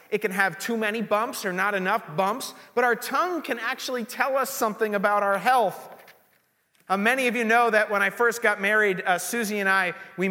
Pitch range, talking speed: 180-225 Hz, 215 wpm